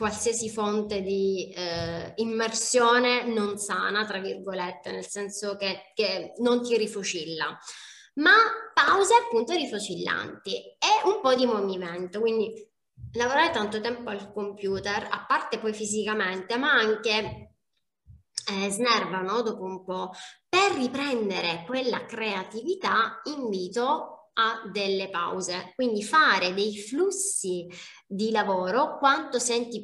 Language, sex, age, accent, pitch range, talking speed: Italian, female, 20-39, native, 200-250 Hz, 115 wpm